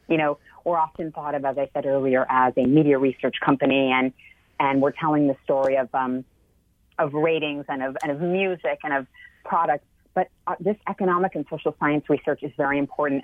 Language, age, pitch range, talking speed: English, 30-49, 140-170 Hz, 200 wpm